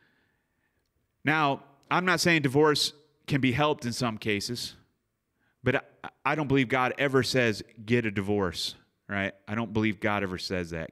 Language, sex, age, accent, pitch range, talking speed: English, male, 30-49, American, 105-145 Hz, 160 wpm